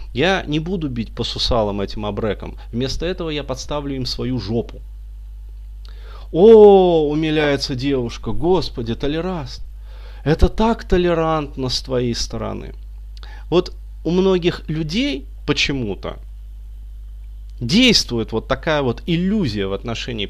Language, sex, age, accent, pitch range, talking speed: Russian, male, 30-49, native, 105-170 Hz, 110 wpm